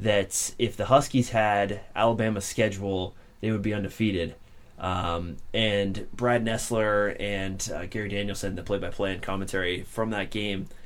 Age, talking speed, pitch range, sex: 20-39, 145 wpm, 95-115 Hz, male